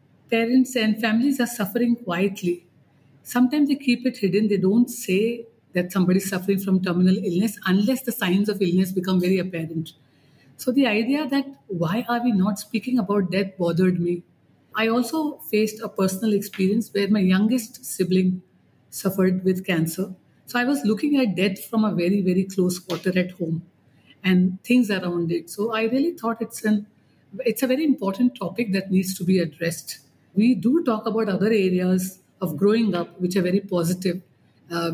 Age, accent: 50-69, Indian